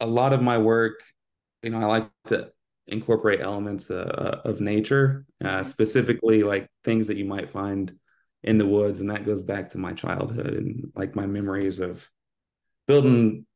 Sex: male